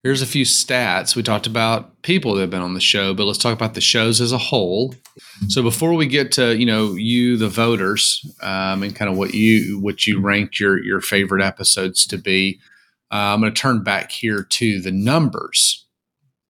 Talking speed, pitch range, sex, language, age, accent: 210 wpm, 100-130 Hz, male, English, 30-49, American